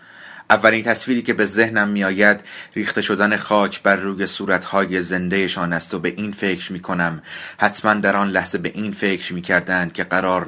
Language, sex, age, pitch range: Persian, male, 30-49, 90-105 Hz